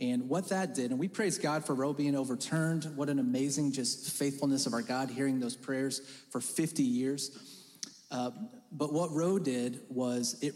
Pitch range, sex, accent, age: 130-180 Hz, male, American, 30-49